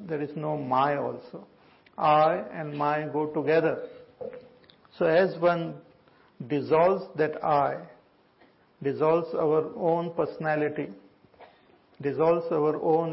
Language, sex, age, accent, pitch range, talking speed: English, male, 50-69, Indian, 150-175 Hz, 105 wpm